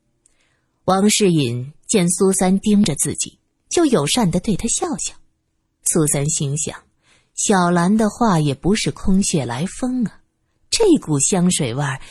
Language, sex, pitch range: Chinese, female, 140-210 Hz